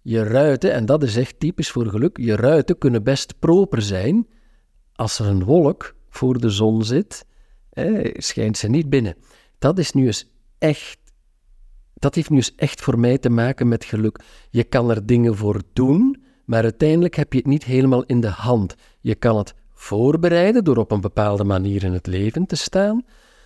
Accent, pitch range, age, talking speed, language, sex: Dutch, 110-170 Hz, 50-69, 180 wpm, Dutch, male